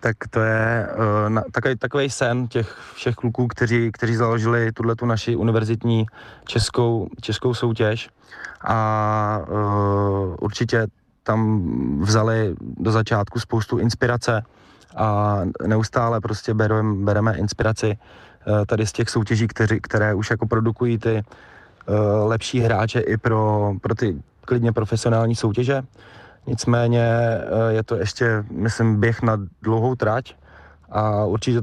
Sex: male